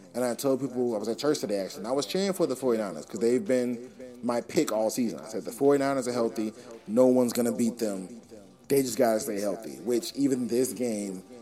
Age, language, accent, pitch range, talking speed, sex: 30-49, English, American, 110-135 Hz, 240 wpm, male